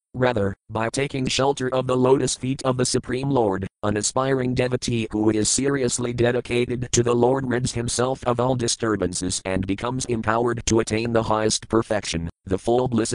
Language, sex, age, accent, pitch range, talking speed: English, male, 40-59, American, 110-120 Hz, 175 wpm